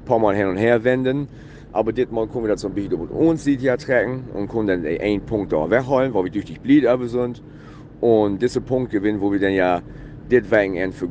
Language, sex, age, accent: German, male, 40-59, German